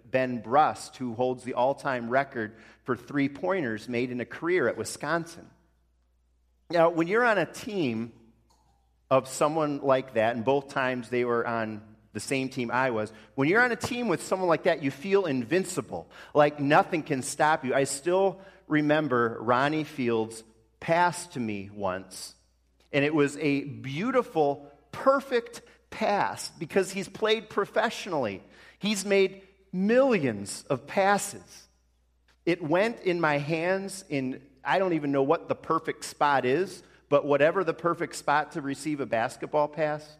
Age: 40-59